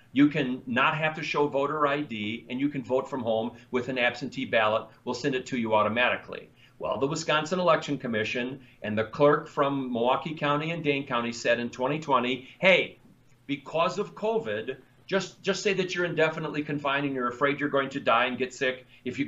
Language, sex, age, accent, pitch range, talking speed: English, male, 40-59, American, 125-155 Hz, 200 wpm